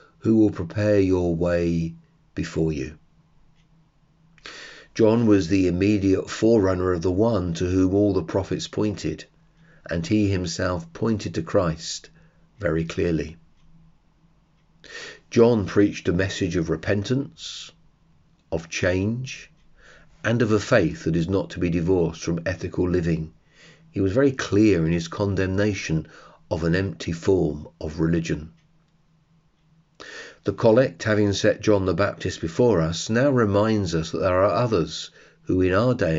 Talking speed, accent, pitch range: 140 wpm, British, 85-140 Hz